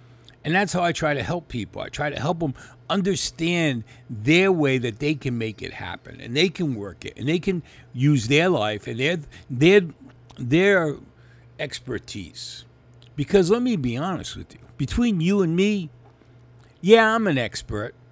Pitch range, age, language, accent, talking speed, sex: 120-155 Hz, 50-69, English, American, 170 wpm, male